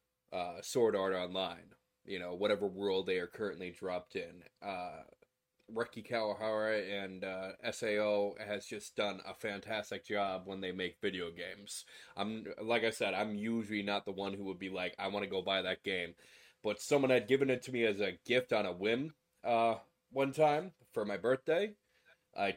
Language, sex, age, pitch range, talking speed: English, male, 20-39, 95-115 Hz, 185 wpm